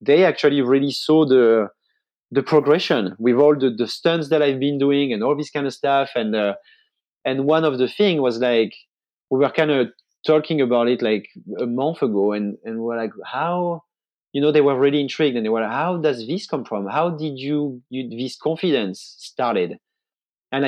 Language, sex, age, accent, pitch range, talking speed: English, male, 30-49, French, 125-160 Hz, 205 wpm